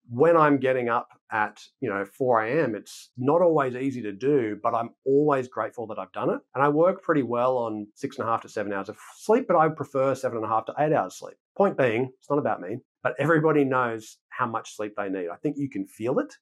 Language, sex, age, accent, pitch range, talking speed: English, male, 40-59, Australian, 115-155 Hz, 250 wpm